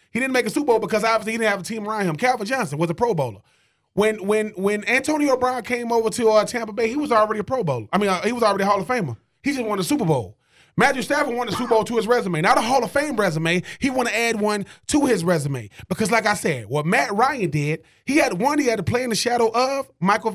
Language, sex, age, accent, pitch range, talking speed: English, male, 20-39, American, 180-255 Hz, 285 wpm